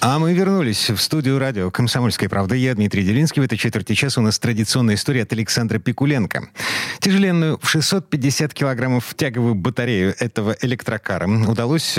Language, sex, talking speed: Russian, male, 155 wpm